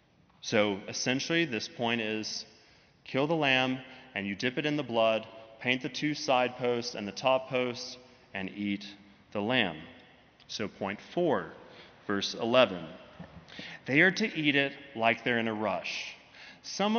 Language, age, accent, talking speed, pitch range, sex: English, 30-49, American, 155 wpm, 120-160 Hz, male